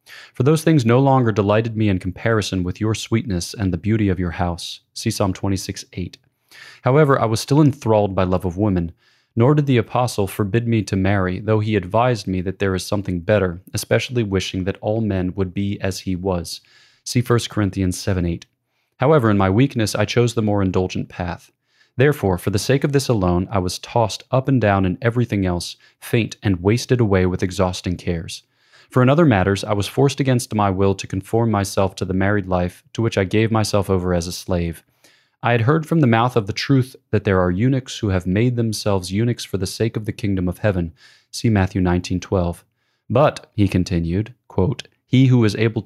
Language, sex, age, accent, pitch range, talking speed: English, male, 30-49, American, 95-120 Hz, 210 wpm